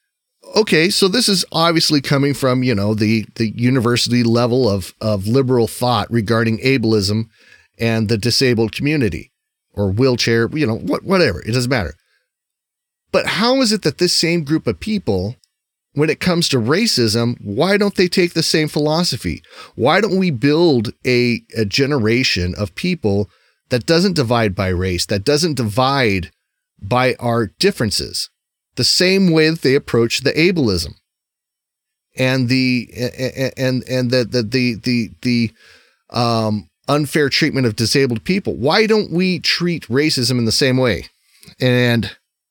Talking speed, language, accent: 150 wpm, English, American